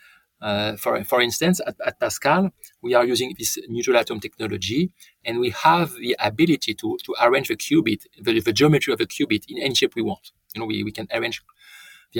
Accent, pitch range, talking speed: French, 110-160 Hz, 205 wpm